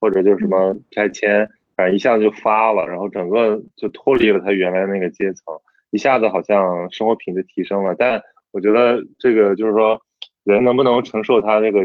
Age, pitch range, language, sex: 20-39, 95-115 Hz, Chinese, male